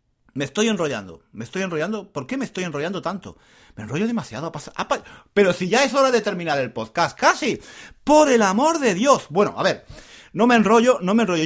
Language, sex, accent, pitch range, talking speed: Spanish, male, Spanish, 150-225 Hz, 225 wpm